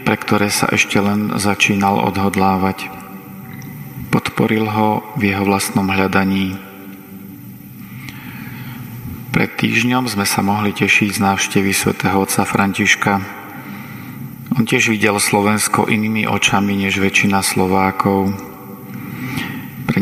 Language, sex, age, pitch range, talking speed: Slovak, male, 40-59, 100-110 Hz, 100 wpm